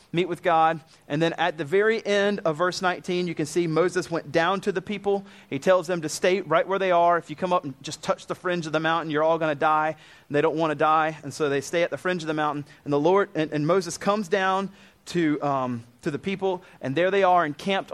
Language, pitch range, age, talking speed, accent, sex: English, 160-195 Hz, 30-49, 270 wpm, American, male